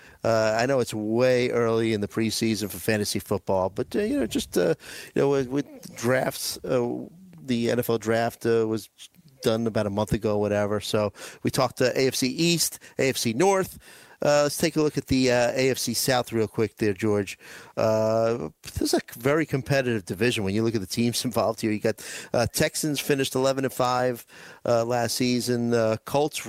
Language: English